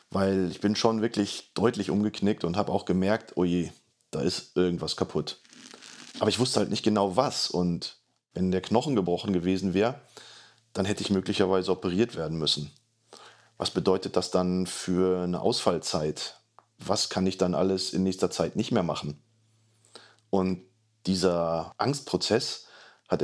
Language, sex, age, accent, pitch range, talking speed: German, male, 30-49, German, 90-110 Hz, 150 wpm